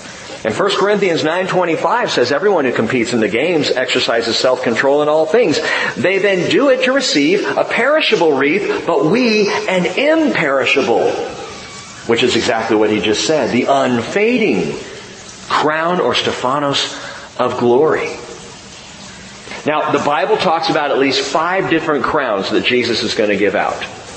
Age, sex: 40-59, male